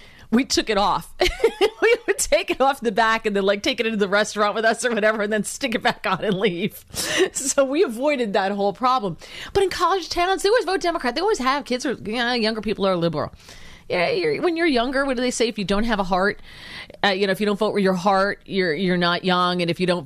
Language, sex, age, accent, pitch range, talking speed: English, female, 40-59, American, 190-260 Hz, 270 wpm